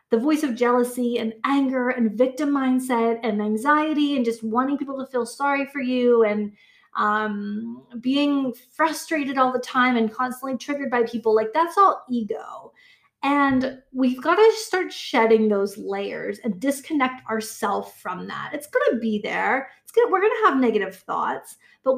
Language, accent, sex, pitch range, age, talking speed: English, American, female, 230-305 Hz, 20-39, 170 wpm